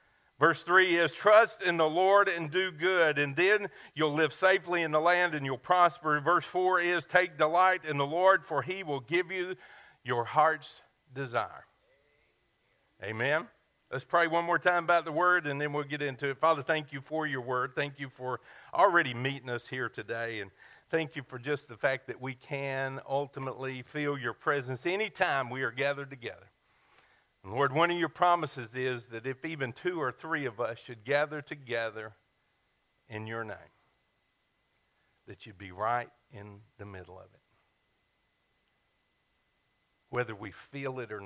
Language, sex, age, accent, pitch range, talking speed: English, male, 50-69, American, 120-160 Hz, 175 wpm